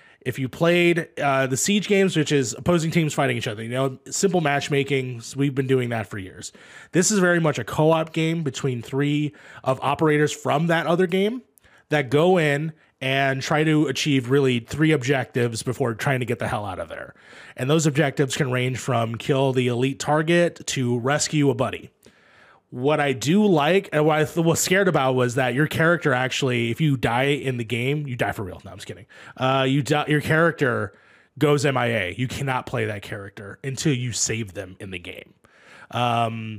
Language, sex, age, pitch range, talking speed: English, male, 20-39, 125-155 Hz, 200 wpm